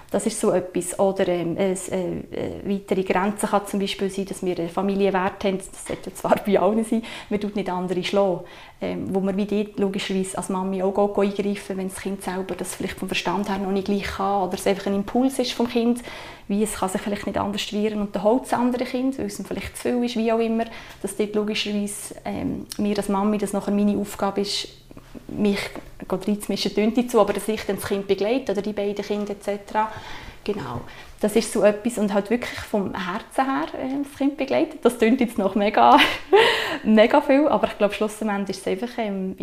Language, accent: German, Swiss